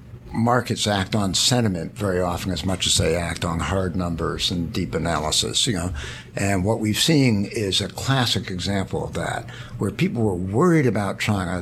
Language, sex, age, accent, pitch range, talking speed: English, male, 60-79, American, 95-120 Hz, 180 wpm